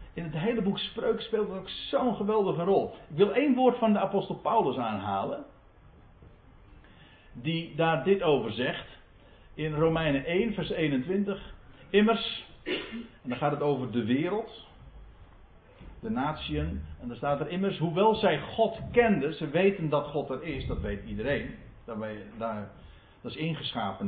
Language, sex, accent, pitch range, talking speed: Dutch, male, Dutch, 130-215 Hz, 155 wpm